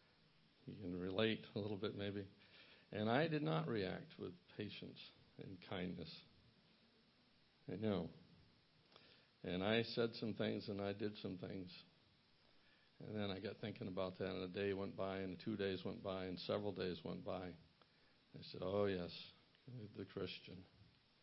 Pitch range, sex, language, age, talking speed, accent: 95-105 Hz, male, English, 60-79, 155 wpm, American